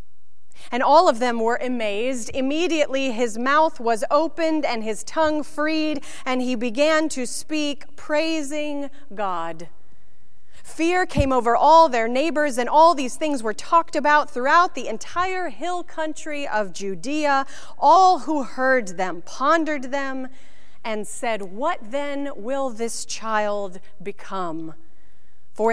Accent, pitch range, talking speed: American, 230-310 Hz, 135 wpm